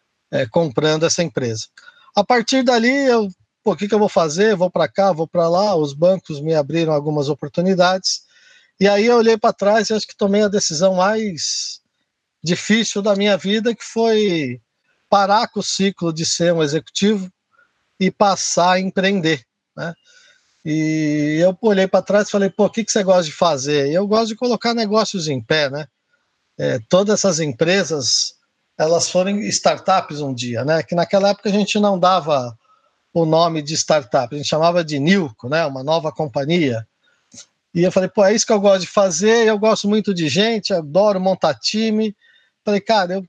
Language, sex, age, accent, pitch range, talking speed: Portuguese, male, 50-69, Brazilian, 160-215 Hz, 185 wpm